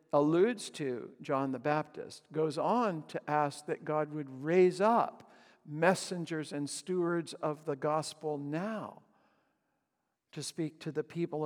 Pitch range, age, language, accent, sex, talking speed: 140-170 Hz, 60-79, English, American, male, 135 wpm